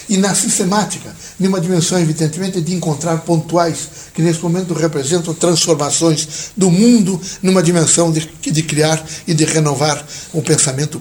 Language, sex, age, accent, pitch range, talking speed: Portuguese, male, 60-79, Brazilian, 155-190 Hz, 145 wpm